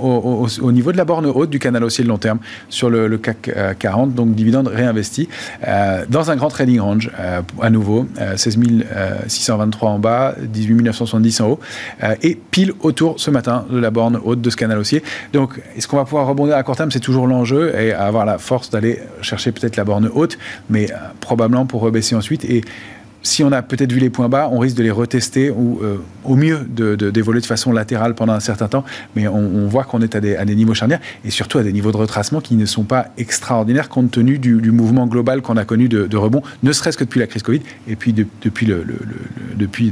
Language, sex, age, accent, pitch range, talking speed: French, male, 40-59, French, 110-130 Hz, 245 wpm